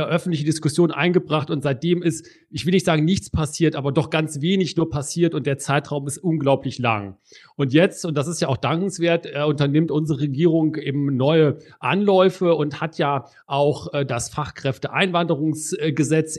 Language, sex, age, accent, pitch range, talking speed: German, male, 40-59, German, 135-160 Hz, 160 wpm